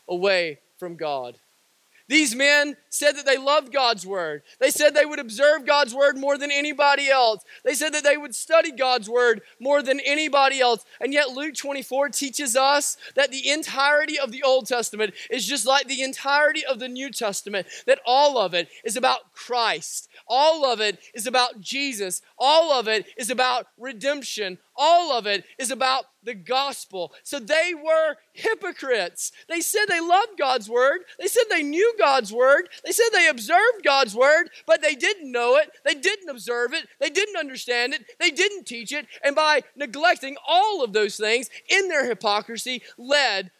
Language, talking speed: English, 180 wpm